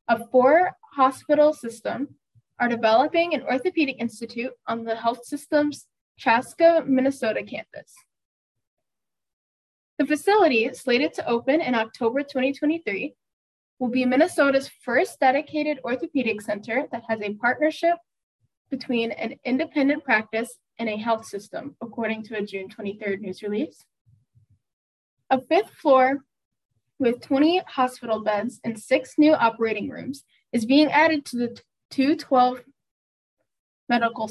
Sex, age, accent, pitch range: female, 10-29, American, 225-285 Hz